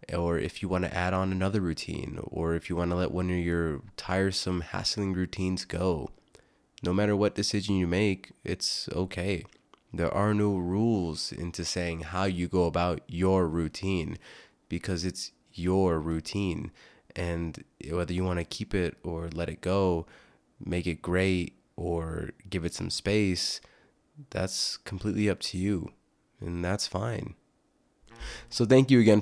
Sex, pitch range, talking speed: male, 85-105 Hz, 160 wpm